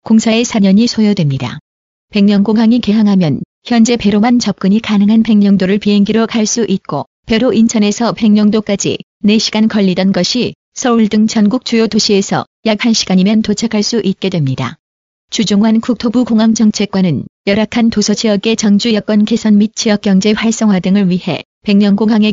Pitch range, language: 200-225 Hz, Korean